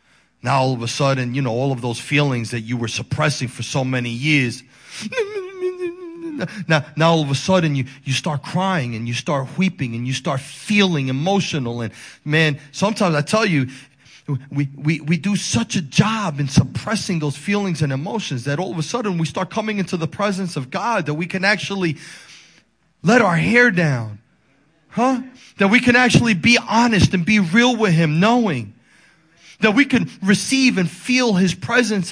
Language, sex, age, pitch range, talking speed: English, male, 30-49, 145-225 Hz, 185 wpm